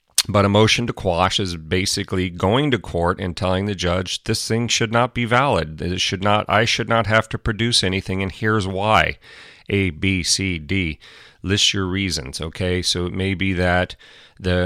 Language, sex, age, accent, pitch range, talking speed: English, male, 40-59, American, 90-105 Hz, 190 wpm